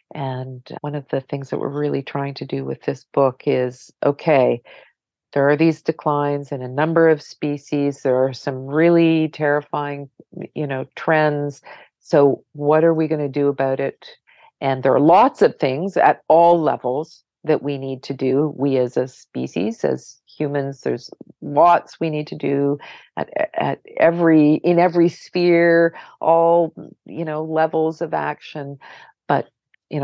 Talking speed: 160 wpm